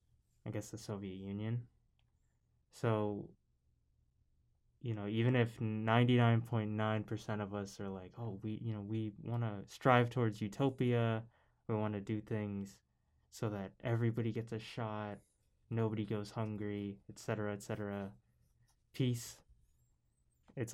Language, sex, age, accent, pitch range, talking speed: English, male, 20-39, American, 100-115 Hz, 135 wpm